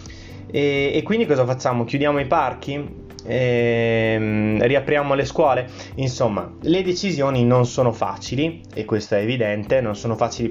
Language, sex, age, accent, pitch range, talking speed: Italian, male, 20-39, native, 110-130 Hz, 150 wpm